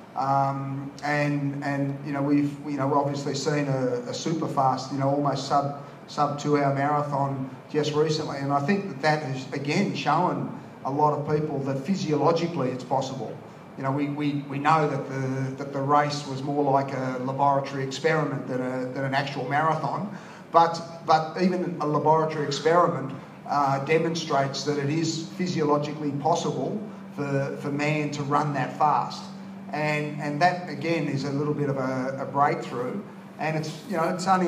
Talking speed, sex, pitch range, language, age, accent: 170 wpm, male, 140-155 Hz, English, 40-59, Australian